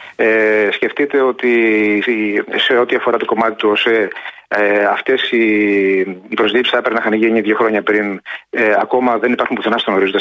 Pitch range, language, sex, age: 105-140 Hz, Greek, male, 30-49